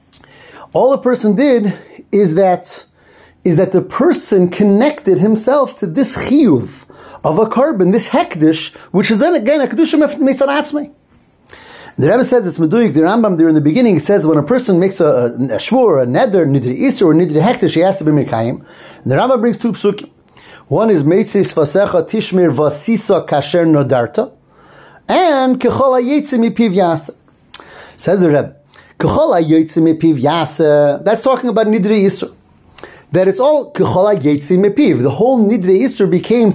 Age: 40-59